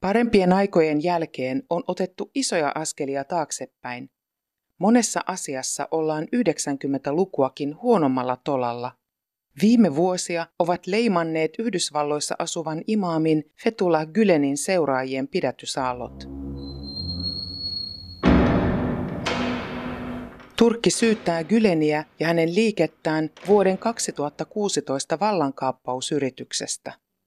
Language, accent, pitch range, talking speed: Finnish, native, 135-185 Hz, 75 wpm